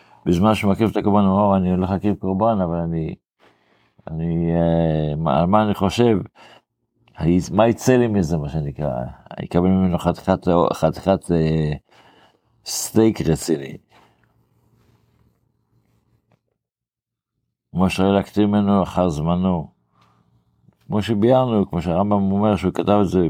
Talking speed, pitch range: 115 wpm, 80-100 Hz